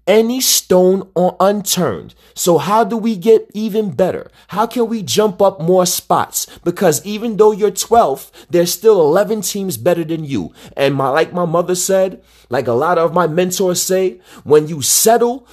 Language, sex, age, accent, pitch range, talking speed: English, male, 30-49, American, 160-195 Hz, 180 wpm